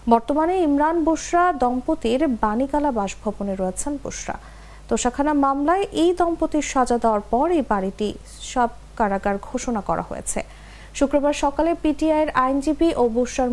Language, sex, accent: English, female, Indian